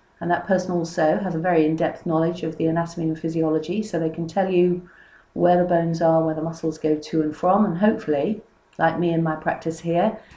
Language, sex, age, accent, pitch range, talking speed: English, female, 40-59, British, 160-195 Hz, 220 wpm